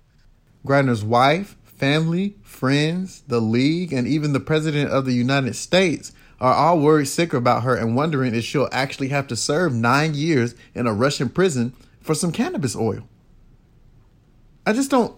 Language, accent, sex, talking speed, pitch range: English, American, male, 160 wpm, 115-150 Hz